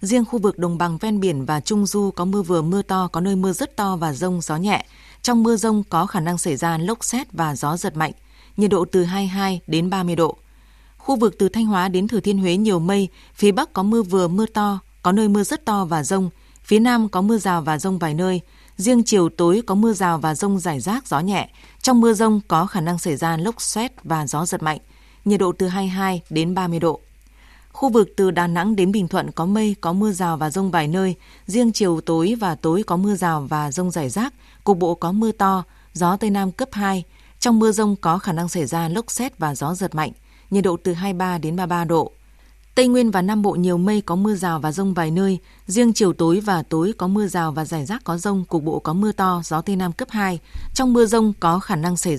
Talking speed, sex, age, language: 250 wpm, female, 20-39, Vietnamese